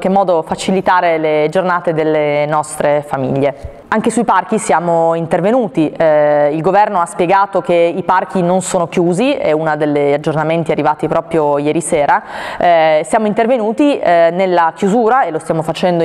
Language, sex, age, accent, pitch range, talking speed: Italian, female, 20-39, native, 165-200 Hz, 155 wpm